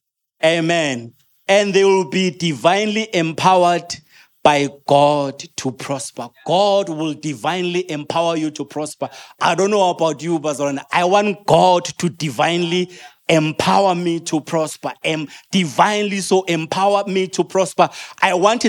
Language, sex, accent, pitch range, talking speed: English, male, South African, 175-215 Hz, 135 wpm